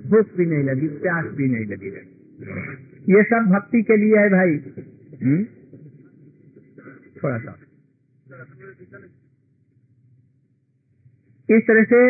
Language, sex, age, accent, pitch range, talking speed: Hindi, male, 50-69, native, 140-210 Hz, 110 wpm